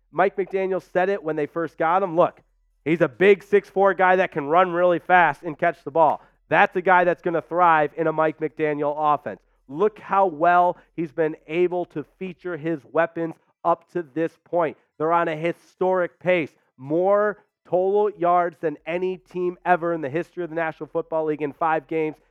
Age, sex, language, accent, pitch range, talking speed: 30-49, male, English, American, 155-195 Hz, 195 wpm